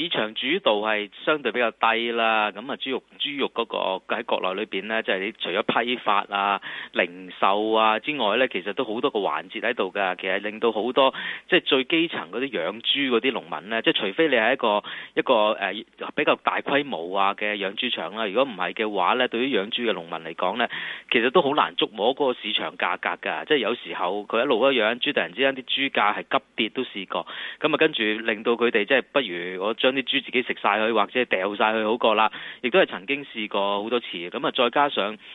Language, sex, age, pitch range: Chinese, male, 30-49, 105-135 Hz